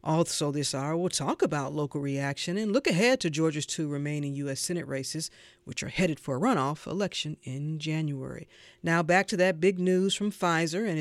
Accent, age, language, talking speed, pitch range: American, 40-59, English, 195 wpm, 145-205 Hz